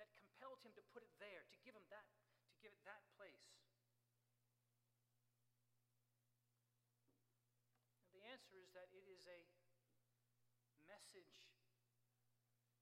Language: English